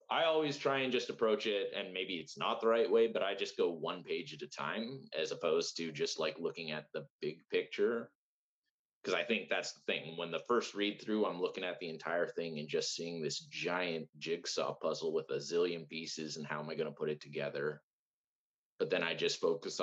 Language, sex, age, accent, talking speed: English, male, 30-49, American, 225 wpm